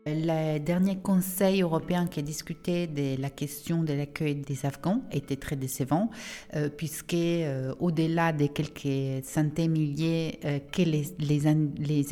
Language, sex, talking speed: English, female, 145 wpm